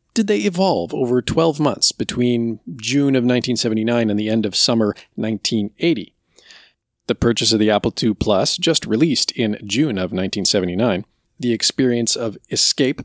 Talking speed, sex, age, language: 150 wpm, male, 40-59, English